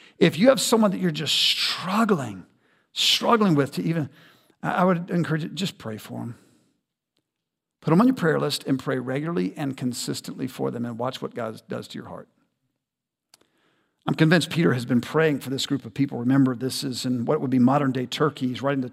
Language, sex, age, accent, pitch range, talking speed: English, male, 50-69, American, 135-175 Hz, 205 wpm